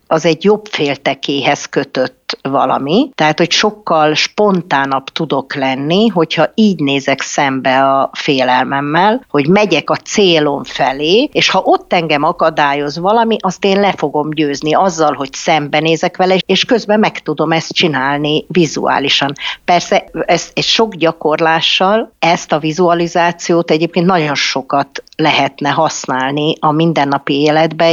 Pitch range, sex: 145-185 Hz, female